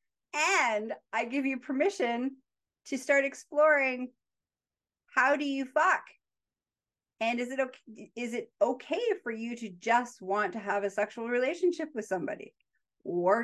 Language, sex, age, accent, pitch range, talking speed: English, female, 40-59, American, 200-290 Hz, 135 wpm